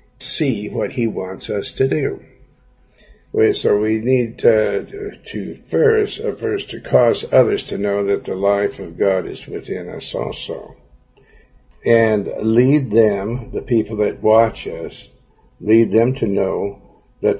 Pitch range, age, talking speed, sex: 100-125 Hz, 60-79, 140 wpm, male